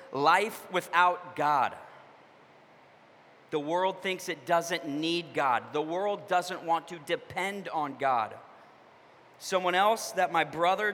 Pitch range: 185-250 Hz